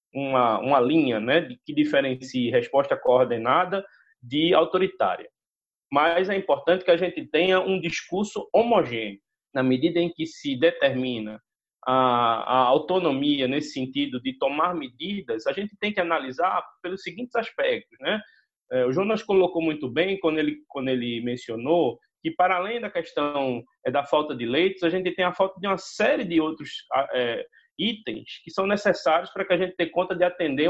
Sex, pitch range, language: male, 140-200 Hz, Portuguese